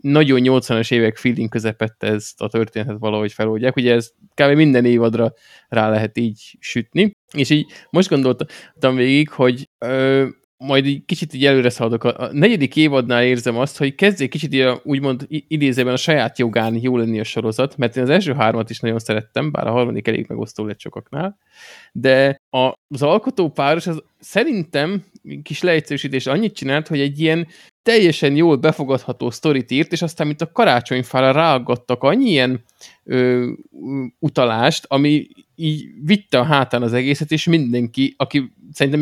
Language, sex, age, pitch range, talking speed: Hungarian, male, 20-39, 120-150 Hz, 155 wpm